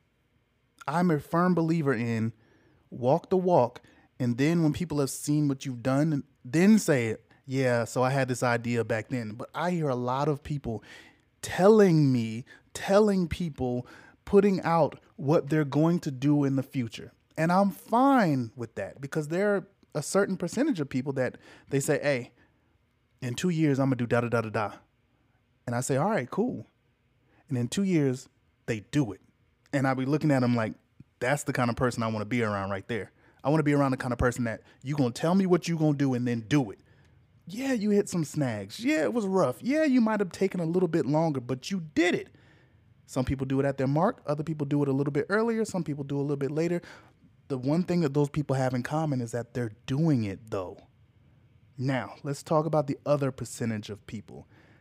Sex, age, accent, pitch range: male, 20-39, American, 120-160 Hz